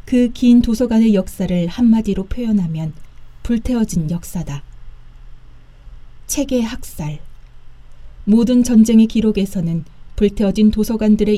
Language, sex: Korean, female